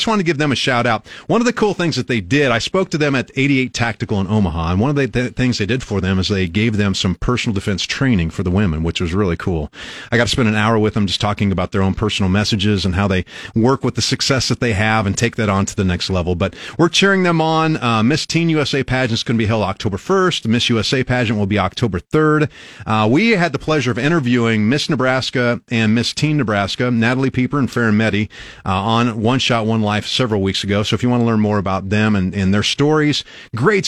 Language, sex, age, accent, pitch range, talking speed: English, male, 40-59, American, 105-140 Hz, 260 wpm